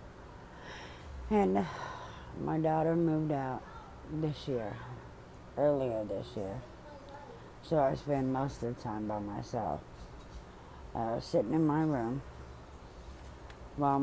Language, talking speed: English, 105 wpm